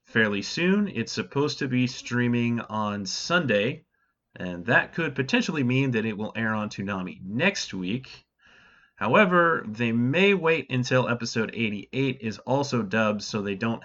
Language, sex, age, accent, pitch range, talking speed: English, male, 30-49, American, 105-155 Hz, 150 wpm